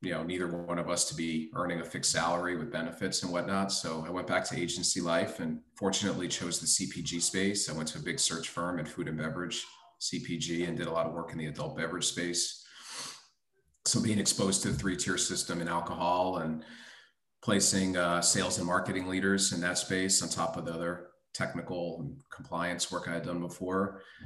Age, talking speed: 40-59, 210 wpm